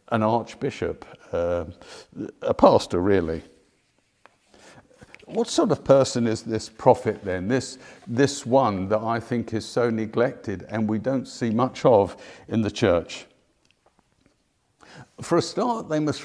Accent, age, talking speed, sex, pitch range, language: British, 50-69, 135 wpm, male, 110-145 Hz, English